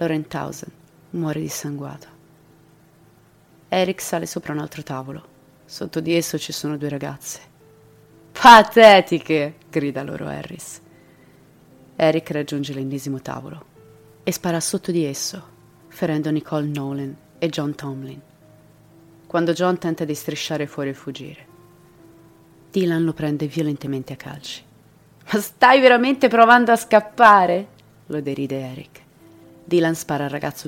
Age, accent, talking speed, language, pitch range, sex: 30-49, native, 125 wpm, Italian, 145-170 Hz, female